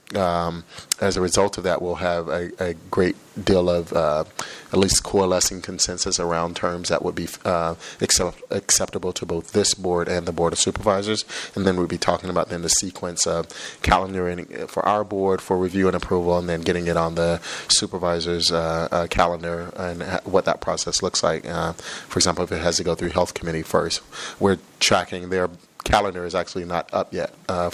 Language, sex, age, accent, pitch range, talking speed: English, male, 30-49, American, 85-95 Hz, 200 wpm